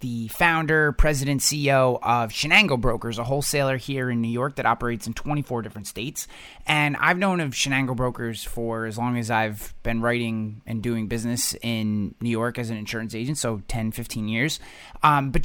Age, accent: 30-49, American